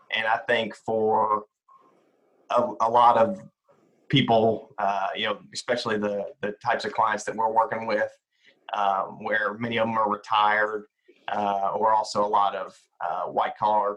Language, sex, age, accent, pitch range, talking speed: English, male, 30-49, American, 105-120 Hz, 165 wpm